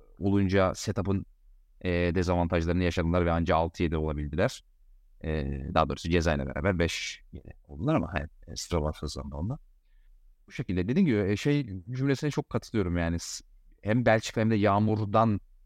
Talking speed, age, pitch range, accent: 135 wpm, 30-49, 85-110 Hz, native